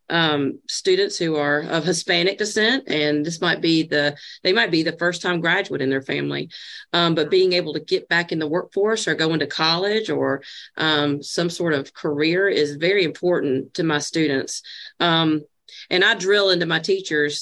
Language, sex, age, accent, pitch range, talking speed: English, female, 40-59, American, 155-195 Hz, 190 wpm